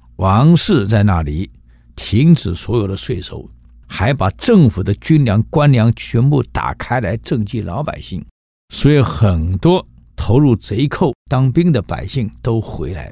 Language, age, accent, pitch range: Chinese, 60-79, native, 95-140 Hz